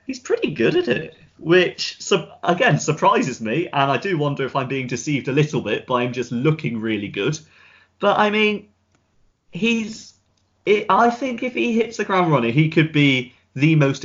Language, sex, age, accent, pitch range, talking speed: English, male, 30-49, British, 110-145 Hz, 190 wpm